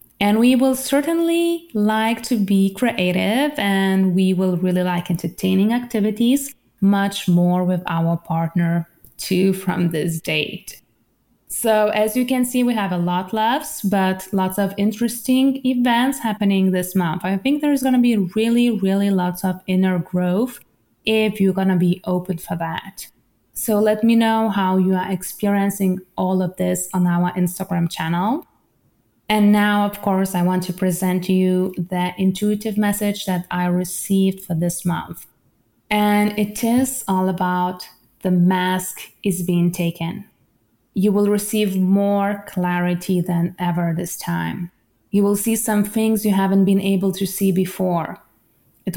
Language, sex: English, female